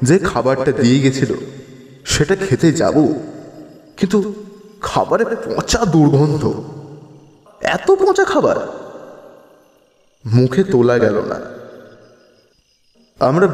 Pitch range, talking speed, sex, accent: 125-155 Hz, 85 wpm, male, native